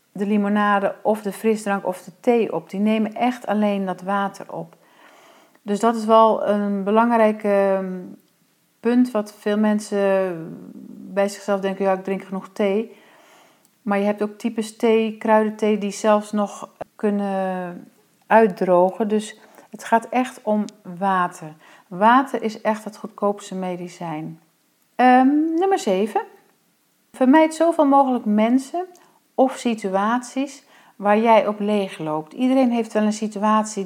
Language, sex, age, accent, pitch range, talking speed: Dutch, female, 40-59, Dutch, 195-230 Hz, 135 wpm